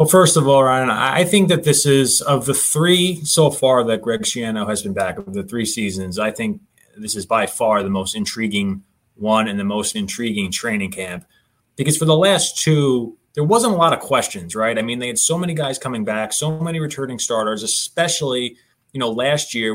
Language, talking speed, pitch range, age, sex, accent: English, 215 wpm, 115-160 Hz, 20-39, male, American